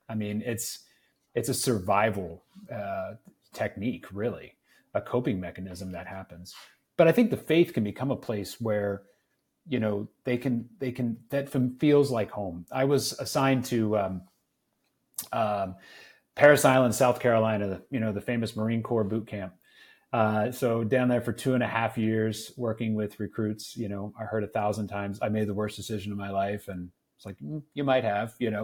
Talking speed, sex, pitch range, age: 185 wpm, male, 100-125 Hz, 30-49